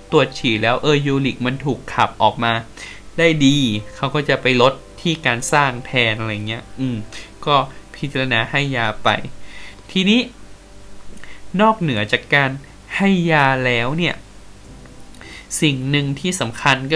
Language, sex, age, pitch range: Thai, male, 20-39, 120-155 Hz